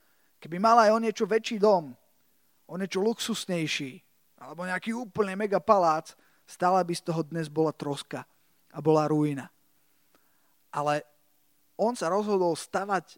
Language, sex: Slovak, male